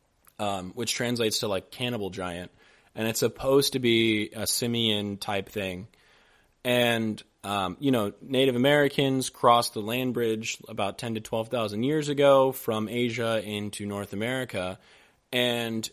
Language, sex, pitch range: English, male, 105-125 Hz